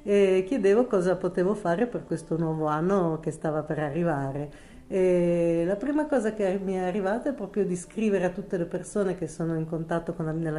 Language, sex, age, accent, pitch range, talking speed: Italian, female, 40-59, native, 160-210 Hz, 195 wpm